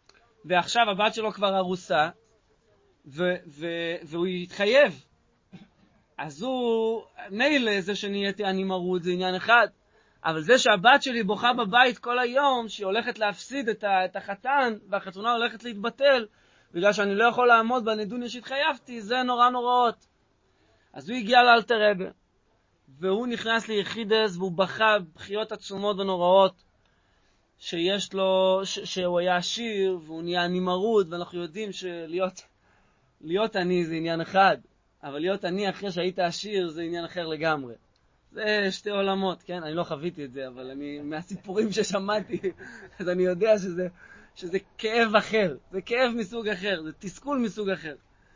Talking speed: 135 wpm